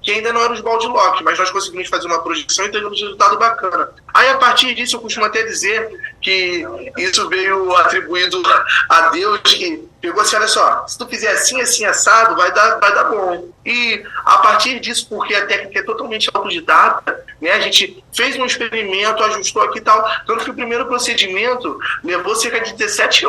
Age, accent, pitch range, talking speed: 20-39, Brazilian, 195-245 Hz, 195 wpm